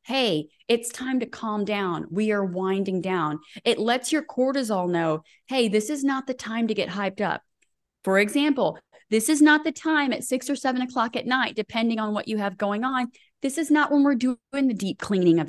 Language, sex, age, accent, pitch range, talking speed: English, female, 30-49, American, 190-265 Hz, 215 wpm